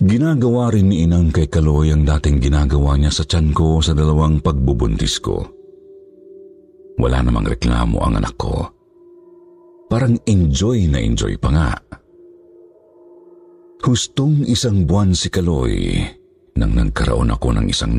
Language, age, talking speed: Filipino, 50-69, 125 wpm